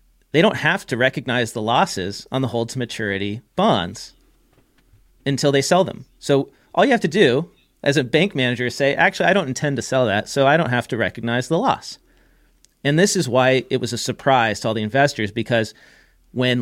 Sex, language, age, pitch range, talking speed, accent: male, English, 40-59, 115-150 Hz, 205 wpm, American